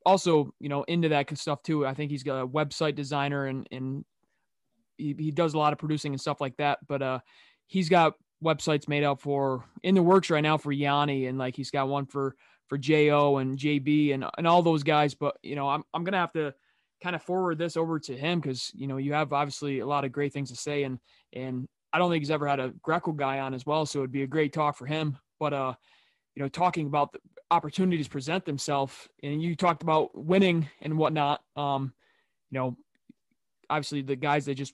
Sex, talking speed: male, 230 wpm